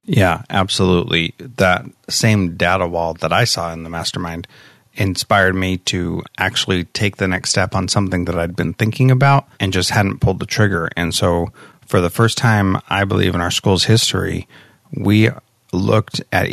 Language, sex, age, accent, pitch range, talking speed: English, male, 30-49, American, 95-115 Hz, 175 wpm